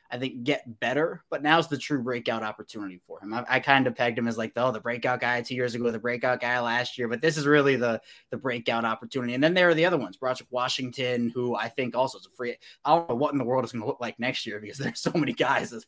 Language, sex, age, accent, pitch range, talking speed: English, male, 20-39, American, 120-150 Hz, 290 wpm